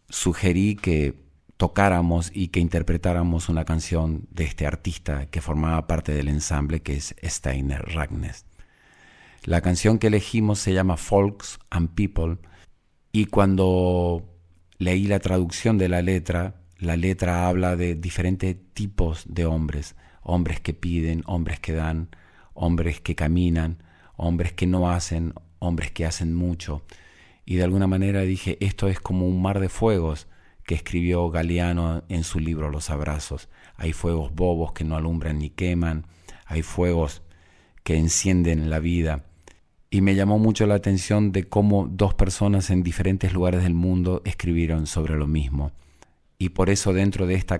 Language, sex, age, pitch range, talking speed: Spanish, male, 40-59, 80-95 Hz, 155 wpm